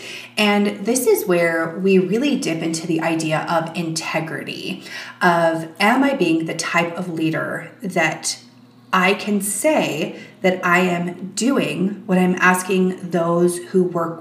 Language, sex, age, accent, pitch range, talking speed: English, female, 30-49, American, 165-205 Hz, 145 wpm